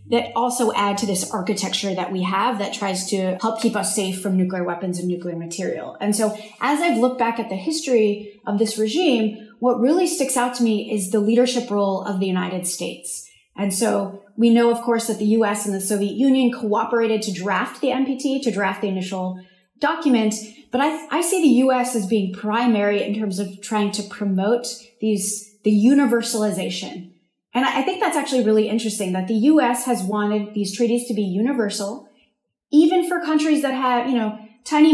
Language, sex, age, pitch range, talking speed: English, female, 20-39, 200-245 Hz, 195 wpm